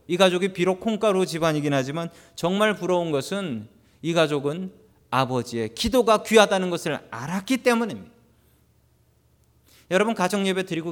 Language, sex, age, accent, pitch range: Korean, male, 30-49, native, 135-195 Hz